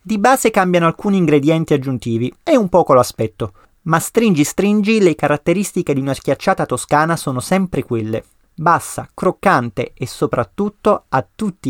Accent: native